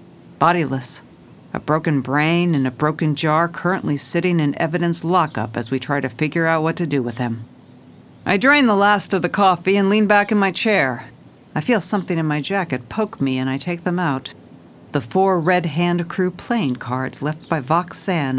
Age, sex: 50-69, female